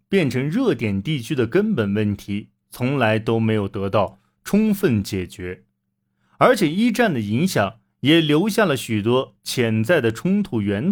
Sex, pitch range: male, 100-145 Hz